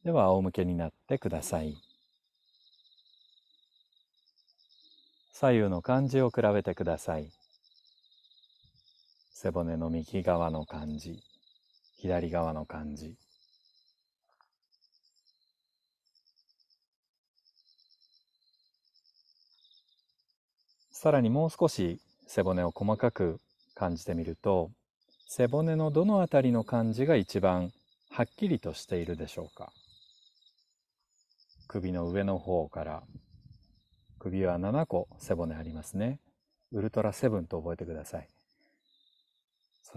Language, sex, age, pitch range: Japanese, male, 40-59, 85-125 Hz